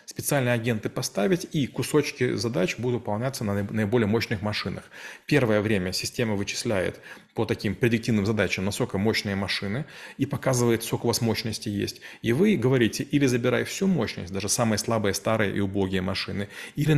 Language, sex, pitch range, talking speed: Russian, male, 105-130 Hz, 160 wpm